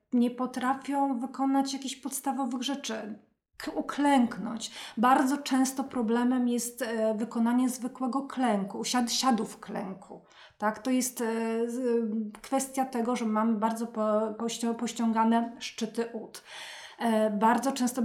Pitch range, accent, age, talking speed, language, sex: 215-245 Hz, native, 30-49, 120 wpm, Polish, female